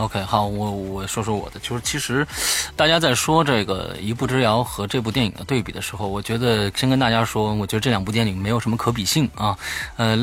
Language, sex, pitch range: Chinese, male, 110-150 Hz